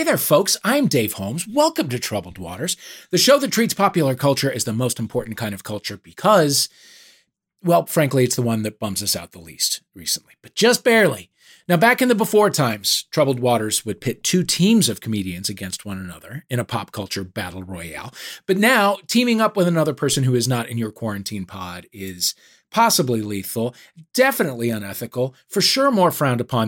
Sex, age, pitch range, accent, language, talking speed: male, 40-59, 110-175 Hz, American, English, 195 wpm